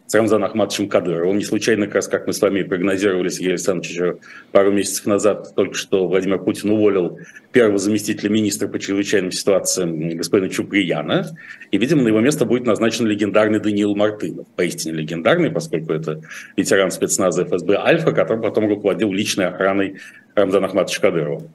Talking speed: 155 wpm